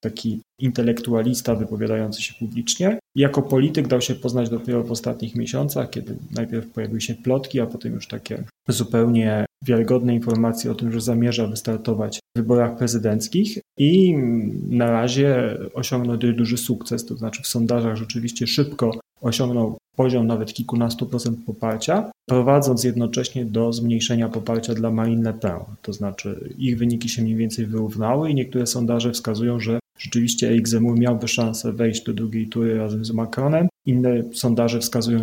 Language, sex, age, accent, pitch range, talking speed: Polish, male, 30-49, native, 115-125 Hz, 150 wpm